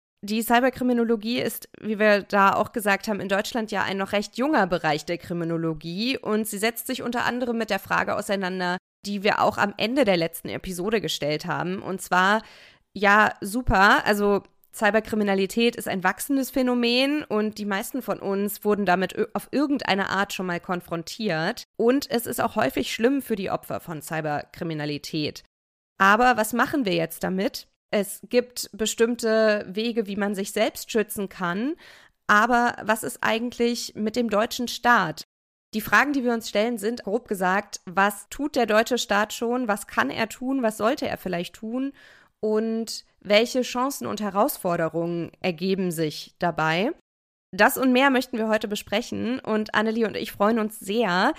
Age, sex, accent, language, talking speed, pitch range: 20-39, female, German, German, 165 wpm, 190-235 Hz